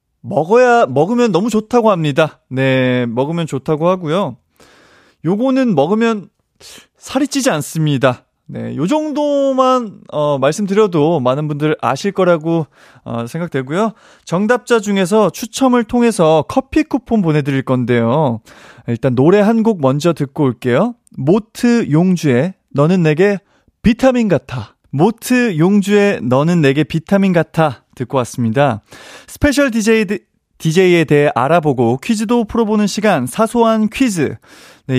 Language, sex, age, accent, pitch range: Korean, male, 30-49, native, 145-225 Hz